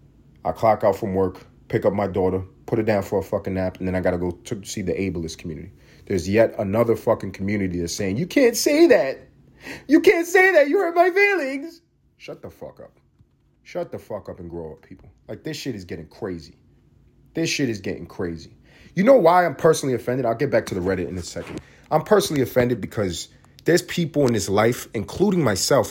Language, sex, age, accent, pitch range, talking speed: English, male, 30-49, American, 110-165 Hz, 220 wpm